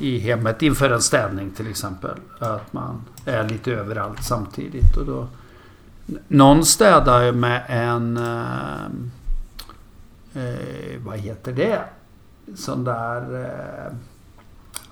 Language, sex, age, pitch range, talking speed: Swedish, male, 60-79, 110-130 Hz, 105 wpm